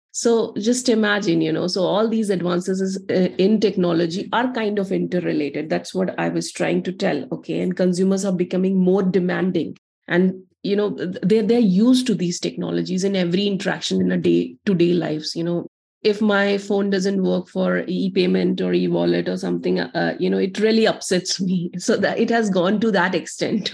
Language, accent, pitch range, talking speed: English, Indian, 175-200 Hz, 190 wpm